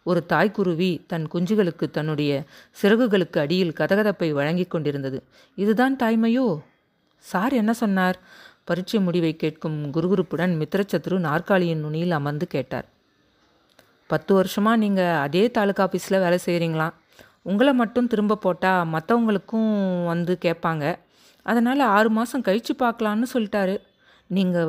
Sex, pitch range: female, 165-220 Hz